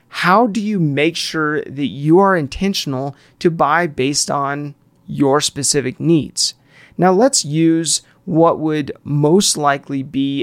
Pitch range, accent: 140-170 Hz, American